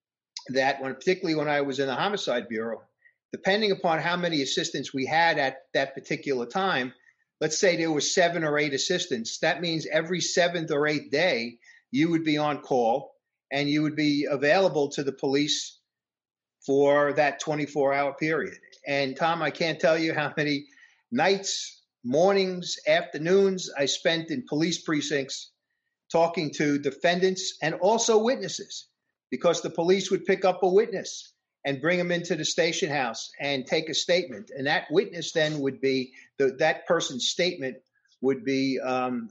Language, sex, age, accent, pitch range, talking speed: English, male, 50-69, American, 140-175 Hz, 165 wpm